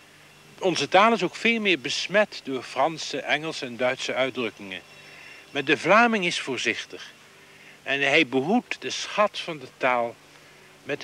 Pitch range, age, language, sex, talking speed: 125-195 Hz, 60-79, Dutch, male, 145 wpm